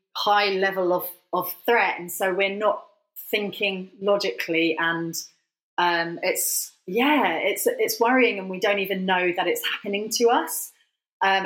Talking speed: 150 wpm